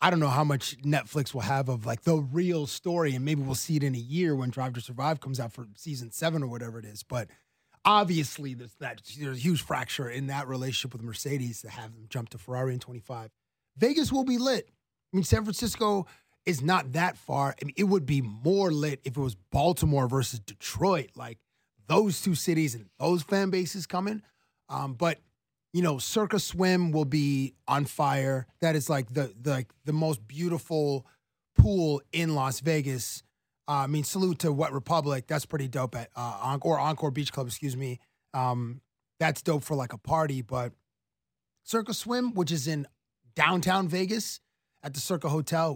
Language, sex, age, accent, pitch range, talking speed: English, male, 30-49, American, 130-170 Hz, 195 wpm